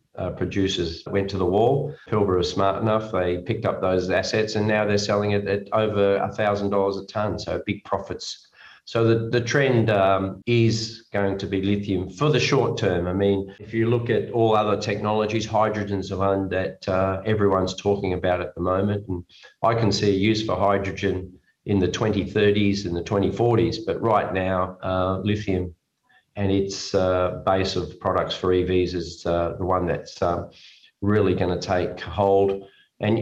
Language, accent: English, Australian